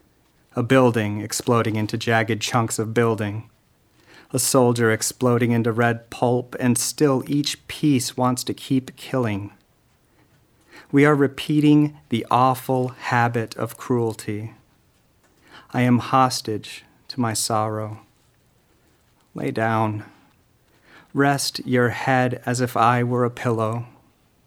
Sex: male